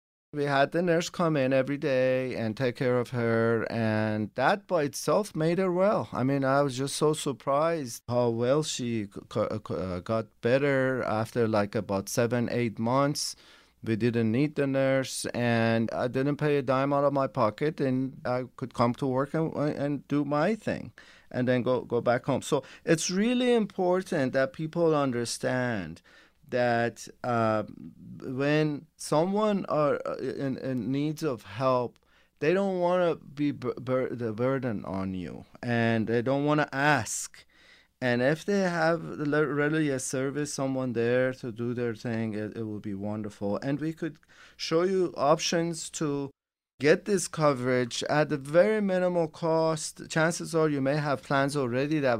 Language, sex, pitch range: English, male, 120-155 Hz